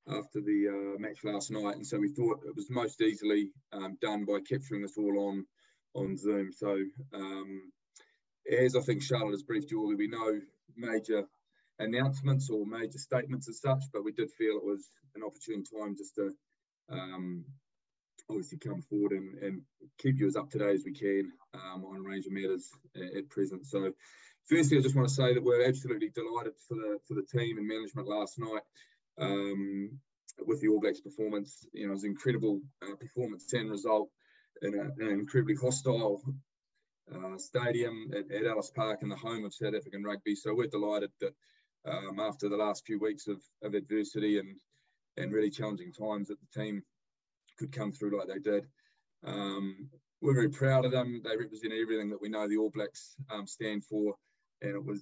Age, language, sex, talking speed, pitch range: 20-39, English, male, 195 wpm, 100-125 Hz